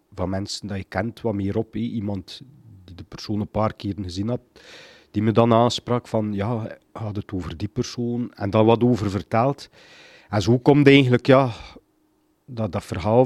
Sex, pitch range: male, 105-130 Hz